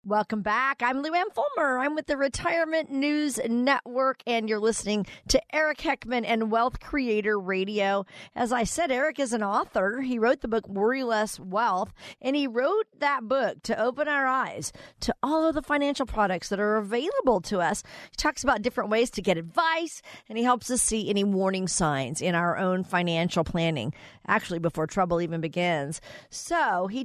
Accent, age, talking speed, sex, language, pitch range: American, 40-59, 185 wpm, female, English, 190-265 Hz